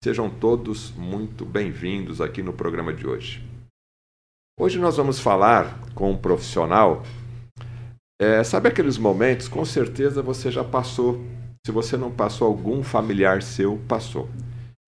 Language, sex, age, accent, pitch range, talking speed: Portuguese, male, 50-69, Brazilian, 105-120 Hz, 135 wpm